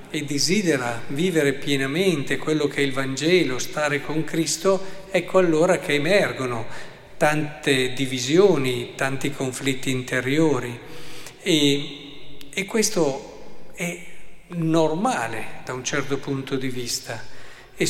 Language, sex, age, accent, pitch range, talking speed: Italian, male, 50-69, native, 125-160 Hz, 110 wpm